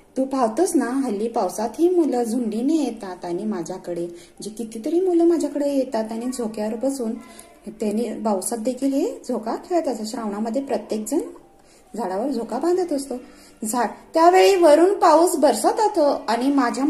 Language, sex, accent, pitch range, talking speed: Marathi, female, native, 215-300 Hz, 140 wpm